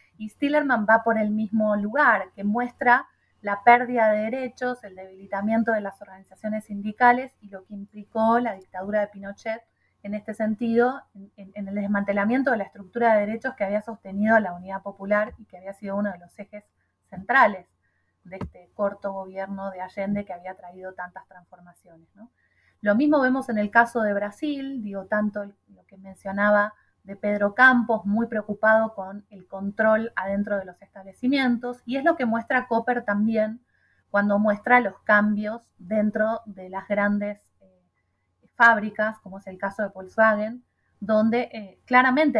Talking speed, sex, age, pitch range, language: 165 wpm, female, 30-49, 200-230 Hz, Spanish